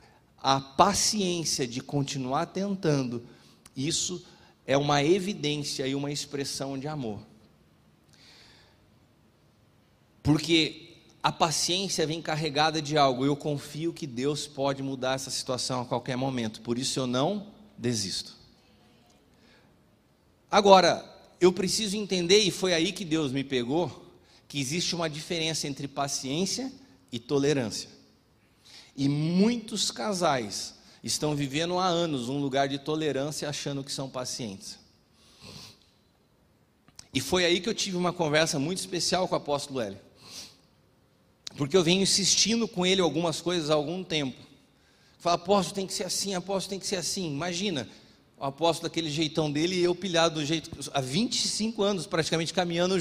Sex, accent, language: male, Brazilian, English